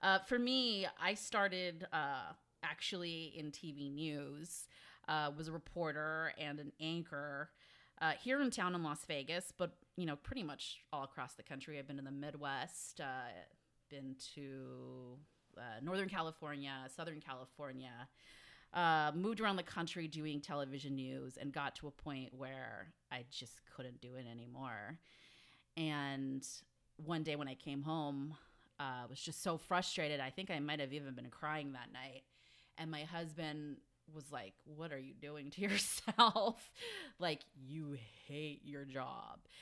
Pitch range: 130-160 Hz